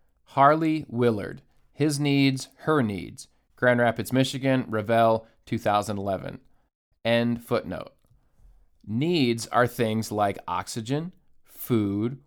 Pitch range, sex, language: 110-145 Hz, male, English